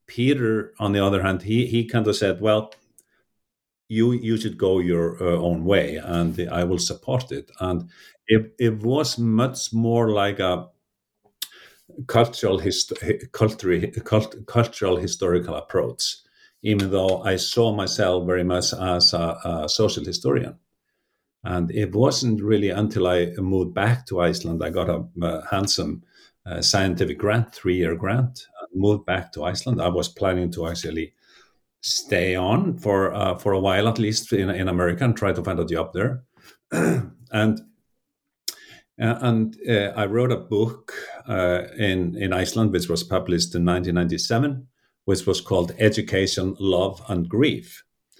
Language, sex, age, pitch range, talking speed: English, male, 50-69, 90-110 Hz, 150 wpm